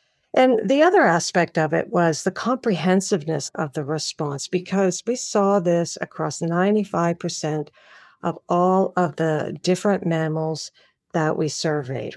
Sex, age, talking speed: female, 50-69, 135 wpm